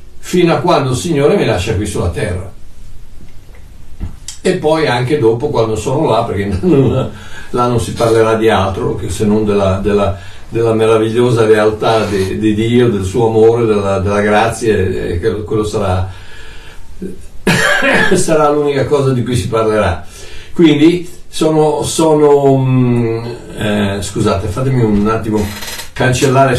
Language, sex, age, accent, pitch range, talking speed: Italian, male, 60-79, native, 95-130 Hz, 140 wpm